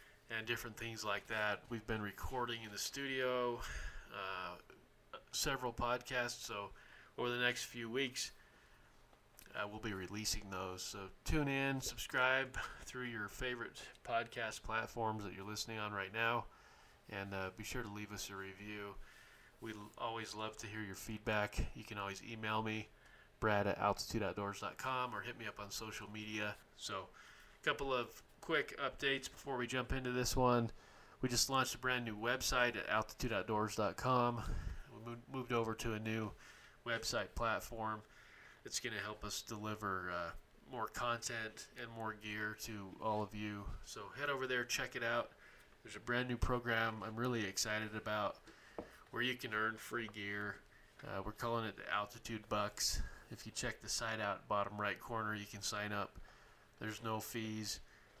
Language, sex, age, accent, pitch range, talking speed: English, male, 20-39, American, 105-120 Hz, 165 wpm